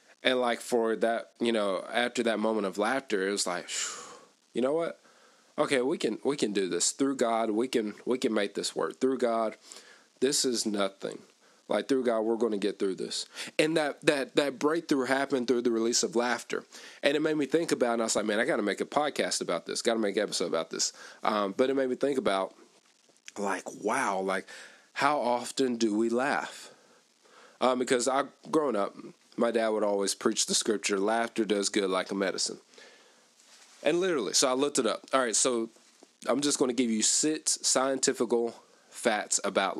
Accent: American